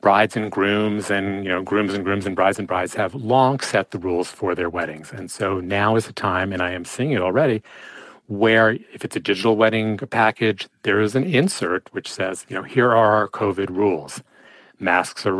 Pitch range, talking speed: 95-125 Hz, 215 wpm